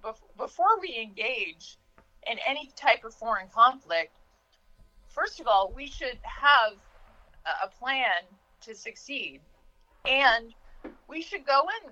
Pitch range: 180-270 Hz